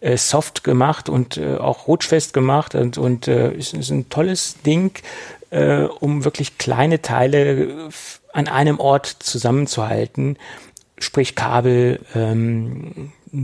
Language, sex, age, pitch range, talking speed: German, male, 40-59, 120-145 Hz, 130 wpm